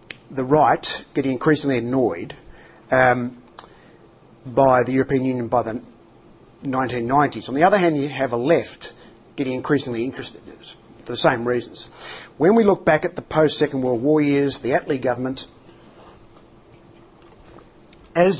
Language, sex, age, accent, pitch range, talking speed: English, male, 50-69, Australian, 125-150 Hz, 145 wpm